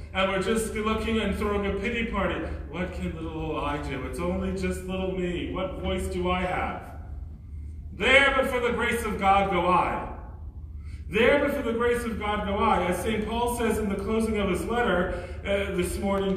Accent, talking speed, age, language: American, 205 wpm, 40-59, English